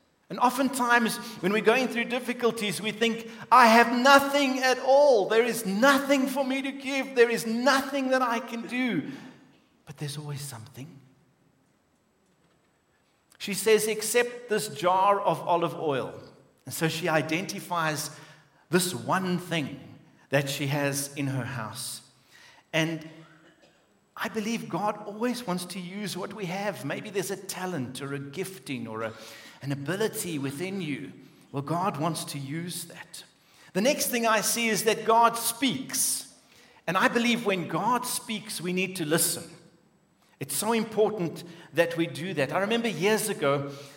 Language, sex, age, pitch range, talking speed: English, male, 50-69, 140-225 Hz, 155 wpm